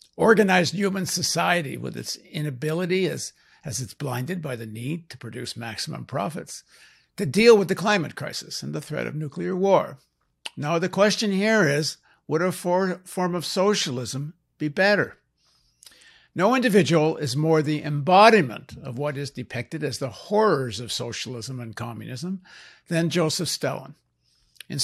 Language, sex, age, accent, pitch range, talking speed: English, male, 60-79, American, 135-180 Hz, 150 wpm